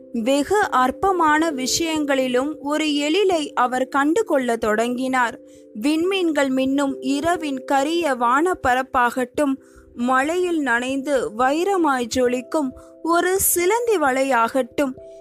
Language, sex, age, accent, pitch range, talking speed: Tamil, female, 20-39, native, 255-320 Hz, 80 wpm